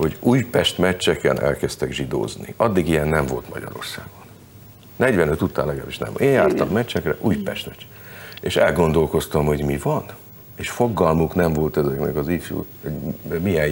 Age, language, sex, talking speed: 50-69, Hungarian, male, 140 wpm